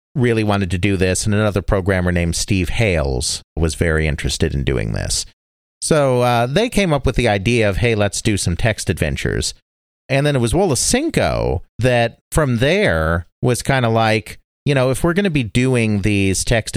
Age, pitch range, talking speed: 40-59, 85-120 Hz, 195 wpm